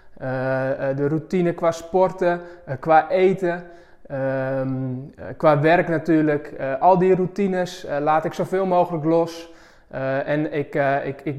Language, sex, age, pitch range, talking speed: Dutch, male, 20-39, 145-185 Hz, 150 wpm